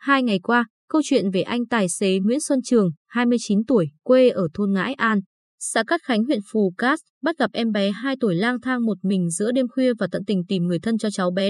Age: 20-39